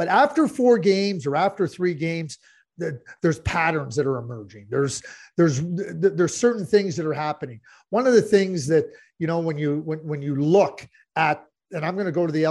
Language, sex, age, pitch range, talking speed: English, male, 50-69, 145-210 Hz, 200 wpm